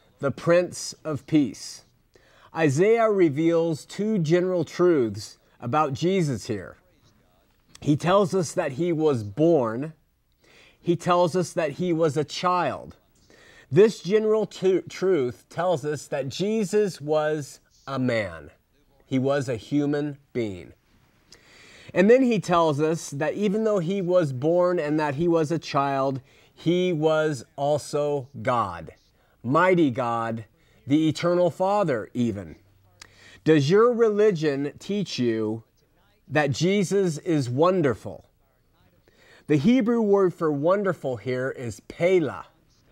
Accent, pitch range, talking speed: American, 135-185 Hz, 120 wpm